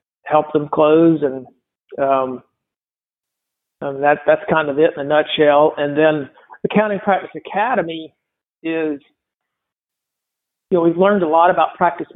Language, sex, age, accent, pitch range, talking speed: English, male, 50-69, American, 145-170 Hz, 125 wpm